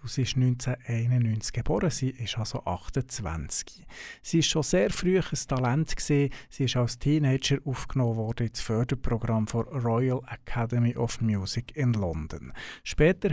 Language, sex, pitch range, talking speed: German, male, 120-140 Hz, 145 wpm